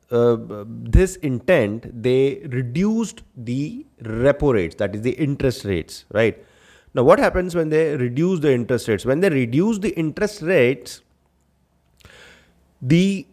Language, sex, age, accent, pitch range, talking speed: English, male, 30-49, Indian, 110-155 Hz, 135 wpm